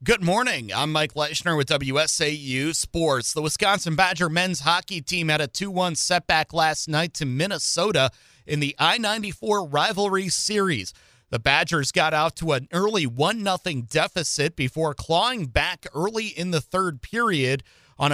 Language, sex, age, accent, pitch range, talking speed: English, male, 30-49, American, 140-175 Hz, 150 wpm